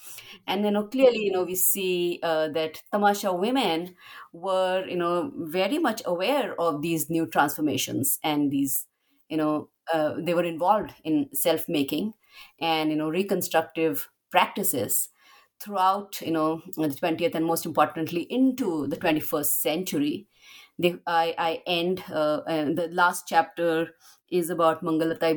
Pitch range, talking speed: 160-200 Hz, 145 wpm